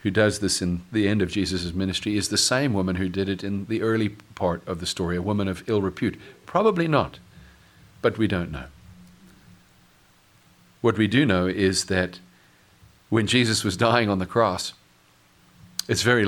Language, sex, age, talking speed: English, male, 40-59, 180 wpm